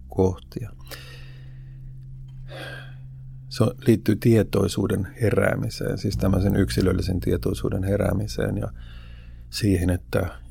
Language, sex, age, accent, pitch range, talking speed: Finnish, male, 50-69, native, 65-105 Hz, 75 wpm